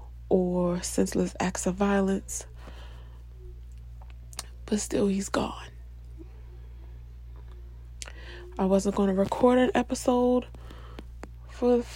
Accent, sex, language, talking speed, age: American, female, English, 85 wpm, 20-39